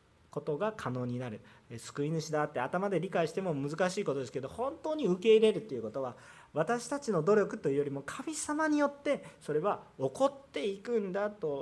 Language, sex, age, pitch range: Japanese, male, 40-59, 140-215 Hz